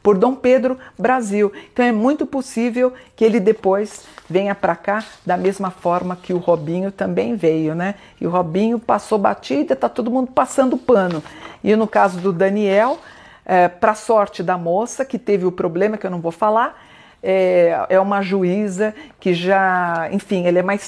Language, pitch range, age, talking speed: Portuguese, 185-235 Hz, 50-69, 180 wpm